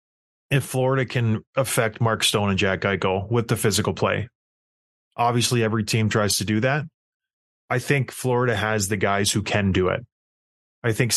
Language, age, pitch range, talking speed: English, 20-39, 105-130 Hz, 170 wpm